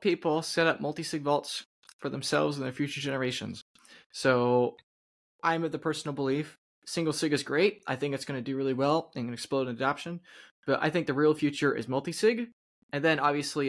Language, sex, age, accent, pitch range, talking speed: English, male, 20-39, American, 125-150 Hz, 200 wpm